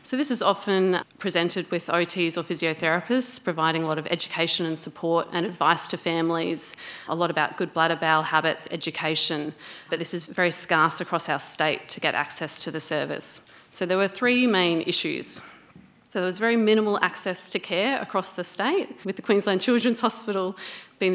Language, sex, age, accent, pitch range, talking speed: English, female, 30-49, Australian, 170-210 Hz, 185 wpm